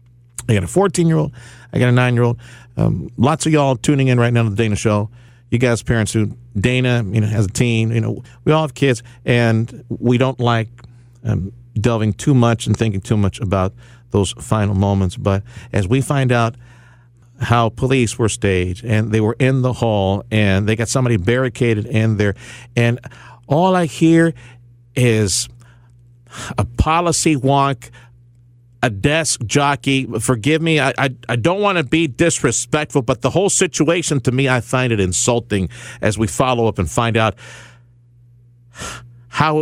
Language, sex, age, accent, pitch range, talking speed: English, male, 50-69, American, 115-140 Hz, 175 wpm